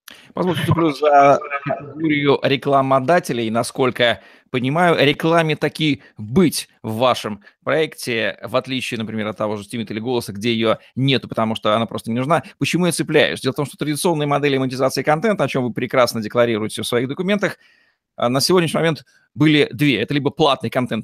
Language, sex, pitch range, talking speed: Russian, male, 120-165 Hz, 170 wpm